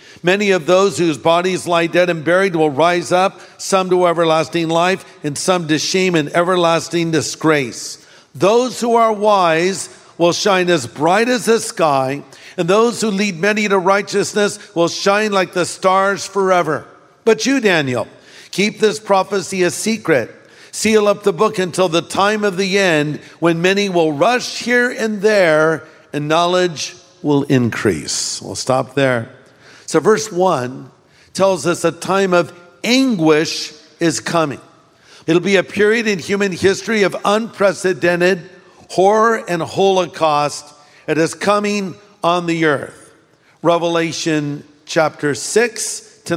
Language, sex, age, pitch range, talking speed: English, male, 50-69, 155-195 Hz, 145 wpm